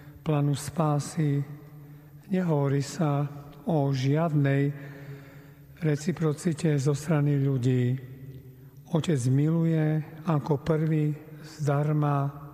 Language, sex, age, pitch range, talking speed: Slovak, male, 50-69, 140-155 Hz, 70 wpm